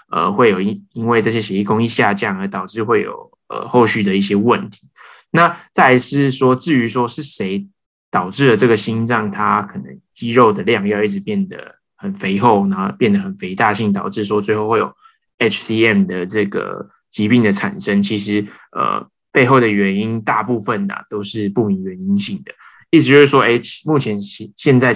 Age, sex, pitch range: 20-39, male, 105-150 Hz